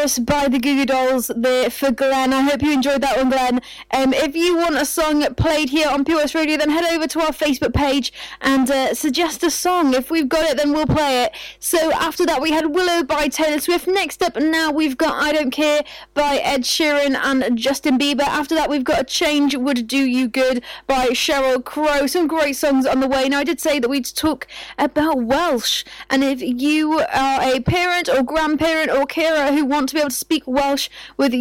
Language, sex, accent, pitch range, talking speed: English, female, British, 260-305 Hz, 220 wpm